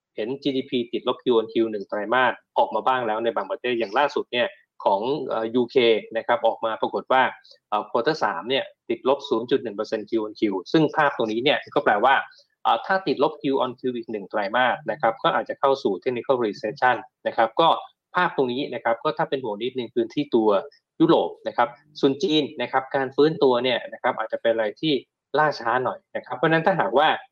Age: 20-39